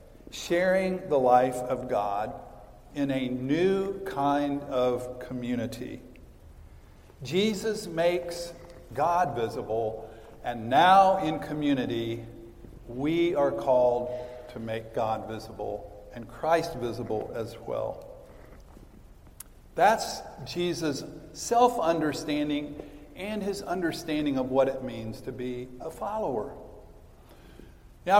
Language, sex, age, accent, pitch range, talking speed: English, male, 50-69, American, 125-175 Hz, 100 wpm